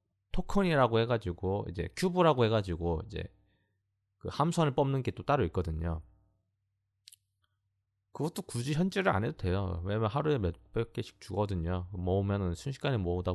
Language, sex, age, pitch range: Korean, male, 20-39, 95-115 Hz